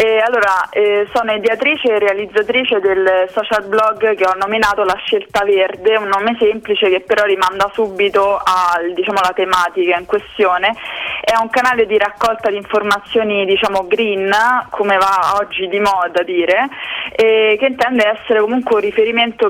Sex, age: female, 20-39